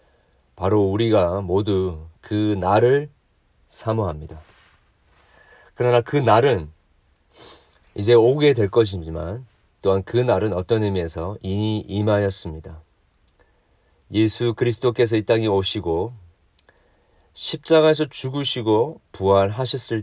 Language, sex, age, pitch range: Korean, male, 40-59, 85-110 Hz